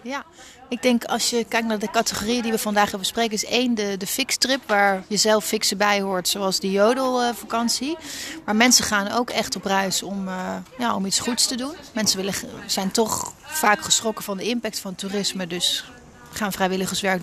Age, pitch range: 30-49, 195-230 Hz